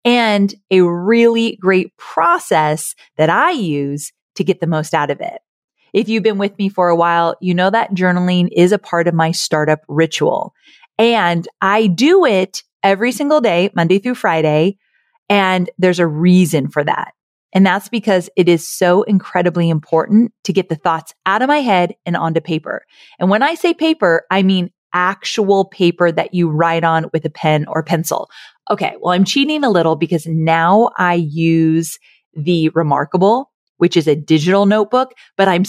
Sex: female